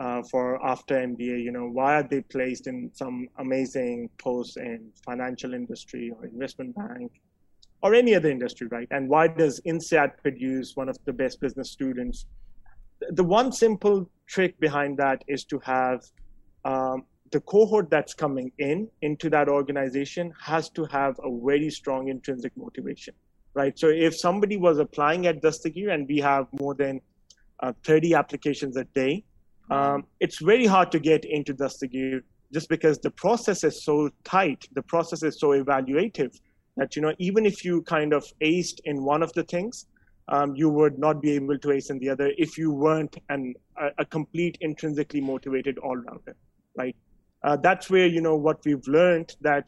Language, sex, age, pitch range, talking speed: Arabic, male, 30-49, 135-160 Hz, 180 wpm